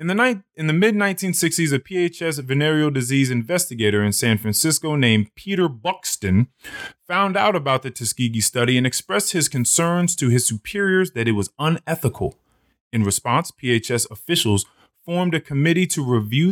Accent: American